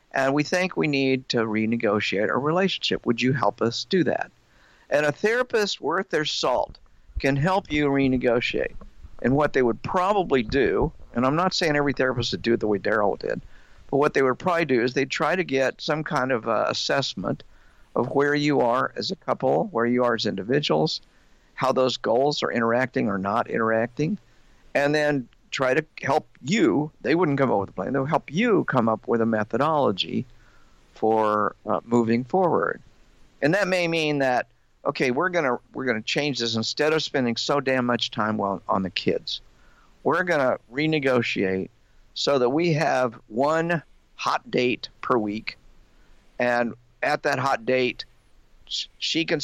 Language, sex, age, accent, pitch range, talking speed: English, male, 50-69, American, 115-150 Hz, 180 wpm